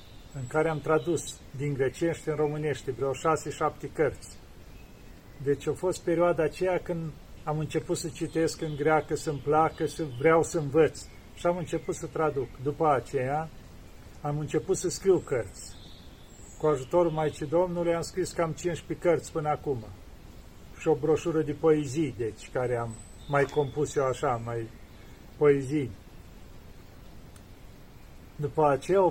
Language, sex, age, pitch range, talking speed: Romanian, male, 40-59, 135-165 Hz, 140 wpm